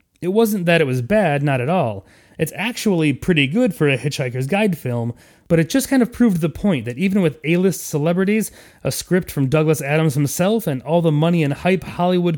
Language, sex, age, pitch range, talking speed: English, male, 30-49, 130-180 Hz, 215 wpm